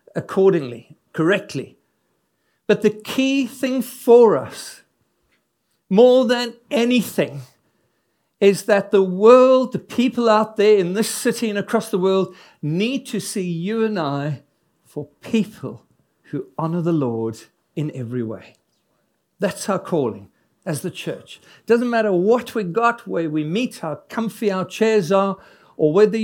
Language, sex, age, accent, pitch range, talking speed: English, male, 60-79, British, 155-220 Hz, 145 wpm